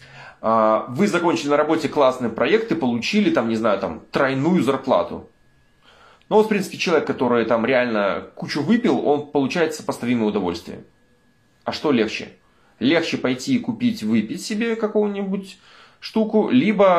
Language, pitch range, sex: Russian, 135-210 Hz, male